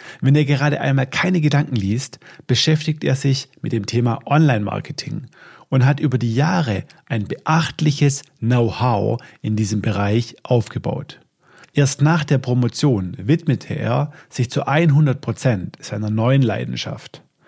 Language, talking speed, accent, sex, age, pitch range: German, 130 wpm, German, male, 40-59, 115-150 Hz